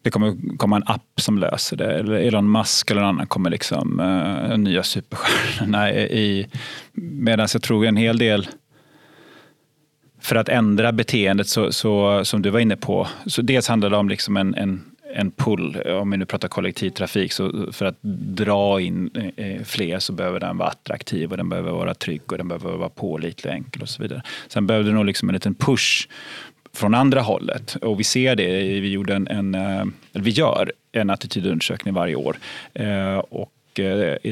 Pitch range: 100-120 Hz